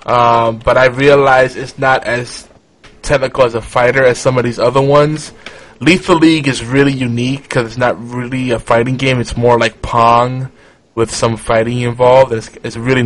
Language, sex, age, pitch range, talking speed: English, male, 20-39, 115-135 Hz, 195 wpm